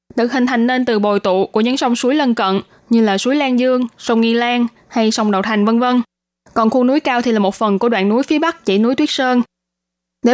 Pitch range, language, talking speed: 210-255 Hz, Vietnamese, 260 wpm